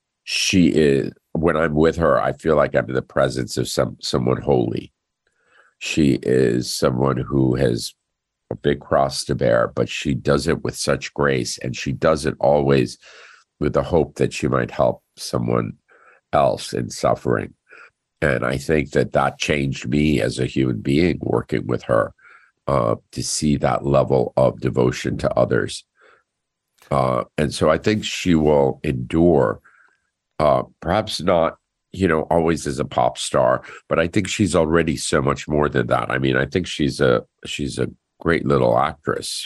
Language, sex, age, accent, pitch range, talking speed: English, male, 50-69, American, 65-80 Hz, 170 wpm